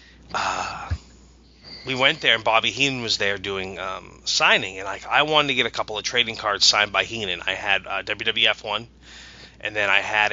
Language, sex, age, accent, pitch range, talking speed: English, male, 30-49, American, 100-125 Hz, 200 wpm